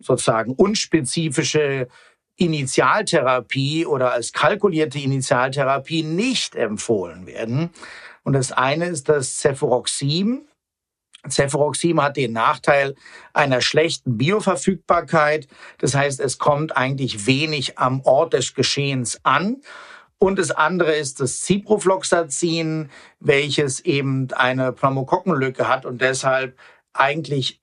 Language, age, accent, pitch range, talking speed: German, 50-69, German, 130-165 Hz, 105 wpm